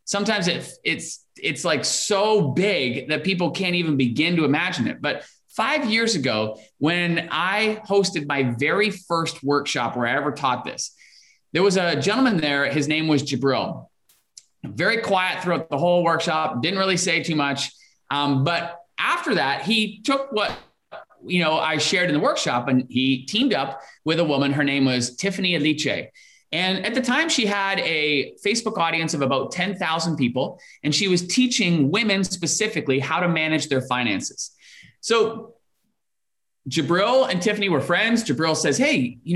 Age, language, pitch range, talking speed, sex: 30-49, Portuguese, 145-200 Hz, 170 wpm, male